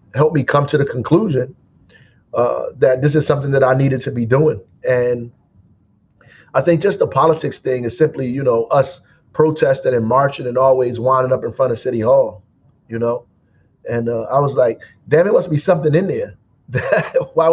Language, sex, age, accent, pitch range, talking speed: English, male, 30-49, American, 125-160 Hz, 190 wpm